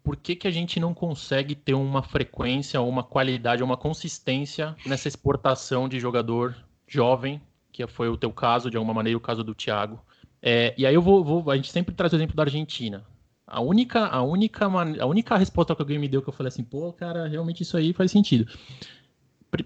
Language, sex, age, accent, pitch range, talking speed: Portuguese, male, 20-39, Brazilian, 115-155 Hz, 210 wpm